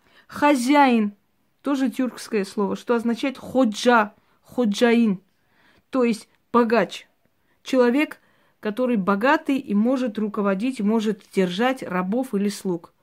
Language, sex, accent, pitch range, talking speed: Russian, female, native, 205-260 Hz, 100 wpm